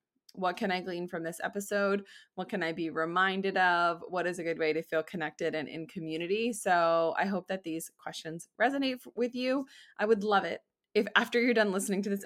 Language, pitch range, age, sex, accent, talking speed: English, 180-225 Hz, 20-39, female, American, 215 wpm